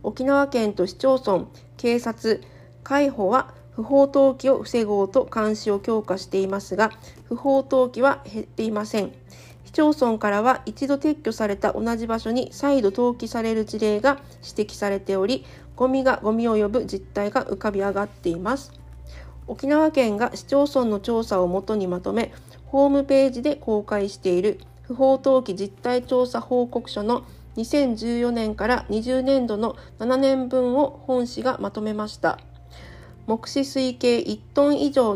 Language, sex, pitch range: Japanese, female, 200-255 Hz